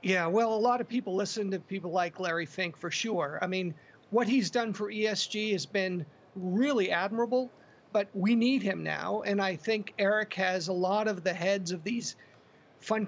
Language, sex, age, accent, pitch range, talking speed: English, male, 40-59, American, 190-220 Hz, 195 wpm